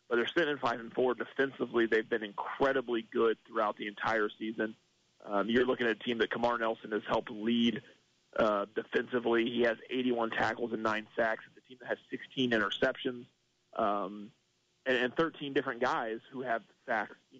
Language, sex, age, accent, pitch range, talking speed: English, male, 30-49, American, 115-135 Hz, 185 wpm